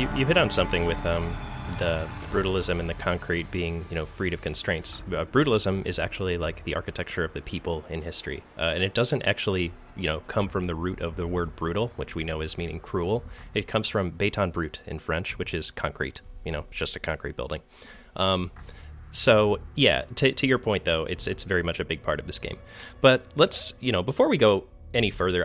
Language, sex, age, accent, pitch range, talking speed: English, male, 30-49, American, 80-95 Hz, 220 wpm